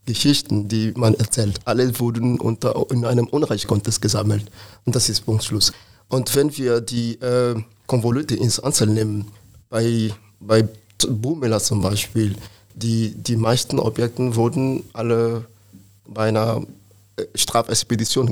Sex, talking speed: male, 130 wpm